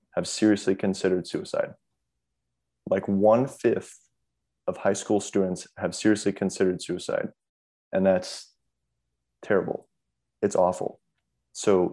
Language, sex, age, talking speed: English, male, 20-39, 105 wpm